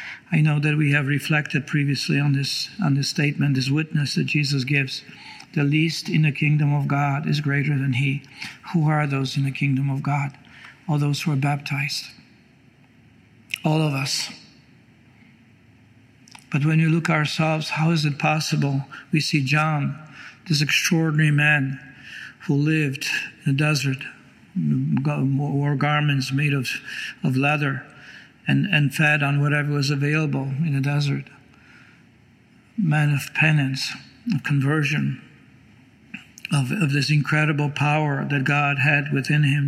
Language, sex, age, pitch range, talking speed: English, male, 60-79, 140-150 Hz, 145 wpm